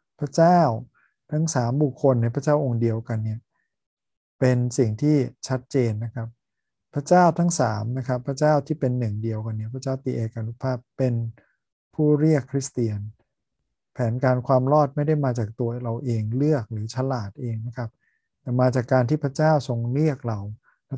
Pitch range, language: 115-140 Hz, Thai